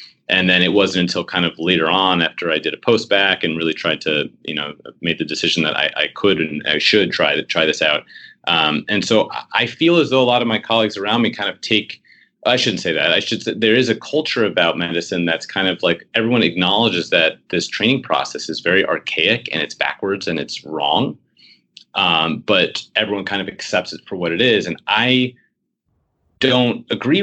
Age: 30-49